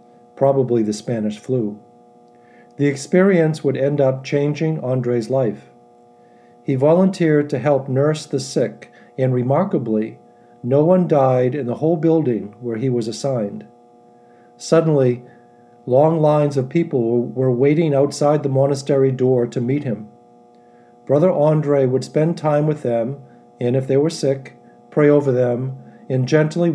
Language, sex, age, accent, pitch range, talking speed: English, male, 50-69, American, 120-145 Hz, 140 wpm